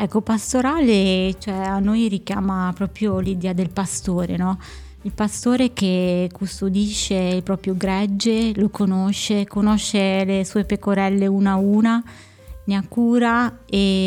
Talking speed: 130 wpm